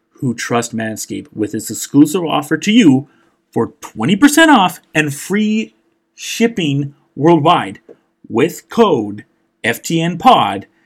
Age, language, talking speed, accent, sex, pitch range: 40-59, English, 105 wpm, American, male, 120-190 Hz